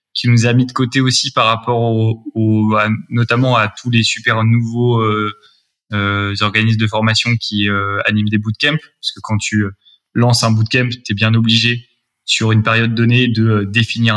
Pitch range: 110-125 Hz